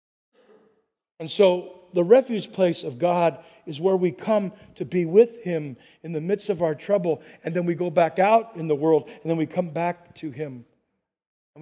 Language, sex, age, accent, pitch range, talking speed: English, male, 40-59, American, 180-240 Hz, 195 wpm